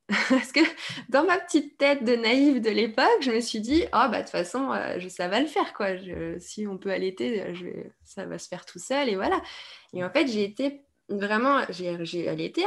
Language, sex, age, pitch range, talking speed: French, female, 20-39, 200-275 Hz, 225 wpm